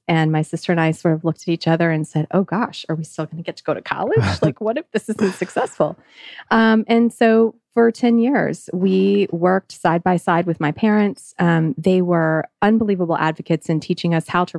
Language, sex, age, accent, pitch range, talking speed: English, female, 30-49, American, 160-205 Hz, 225 wpm